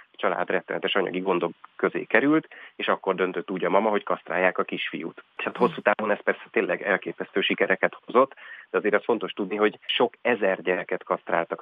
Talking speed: 180 wpm